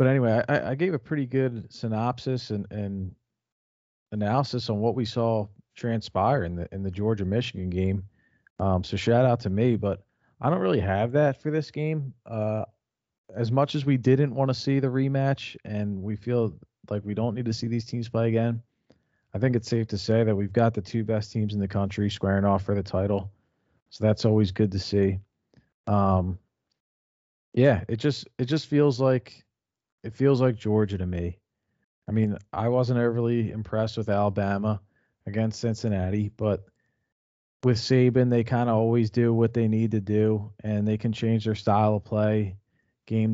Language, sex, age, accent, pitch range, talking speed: English, male, 40-59, American, 100-120 Hz, 185 wpm